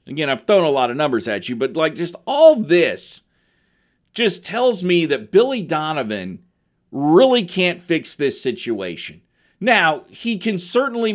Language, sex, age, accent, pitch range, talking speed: English, male, 40-59, American, 130-175 Hz, 155 wpm